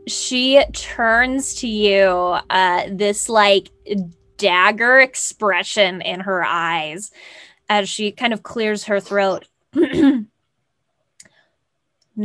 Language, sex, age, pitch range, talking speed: English, female, 10-29, 200-250 Hz, 105 wpm